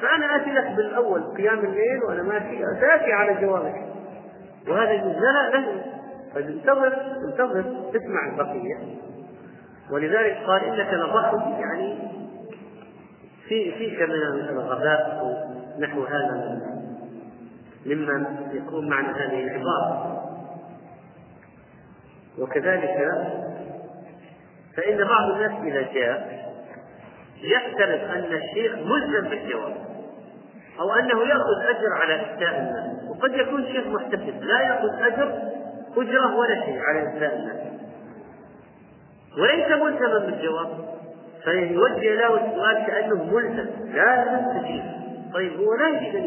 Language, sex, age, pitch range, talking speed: Arabic, male, 40-59, 155-230 Hz, 105 wpm